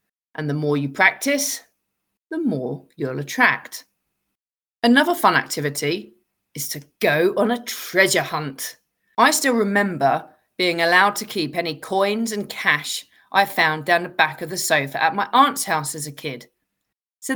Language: English